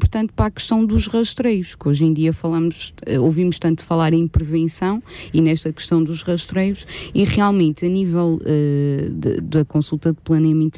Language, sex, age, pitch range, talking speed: Portuguese, female, 20-39, 150-180 Hz, 165 wpm